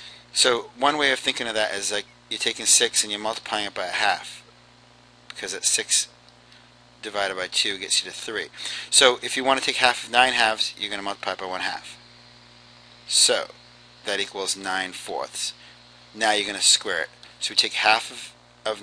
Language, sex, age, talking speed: English, male, 40-59, 205 wpm